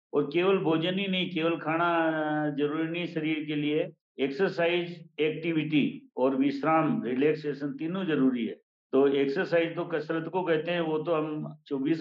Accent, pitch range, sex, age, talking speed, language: Indian, 135-160 Hz, male, 50-69, 155 wpm, English